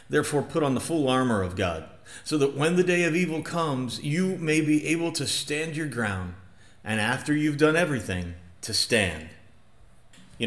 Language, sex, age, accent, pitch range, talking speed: English, male, 40-59, American, 115-160 Hz, 185 wpm